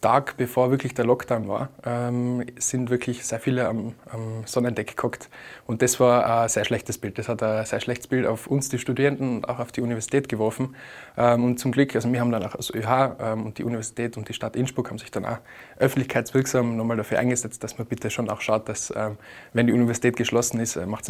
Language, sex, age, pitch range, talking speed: German, male, 20-39, 115-130 Hz, 230 wpm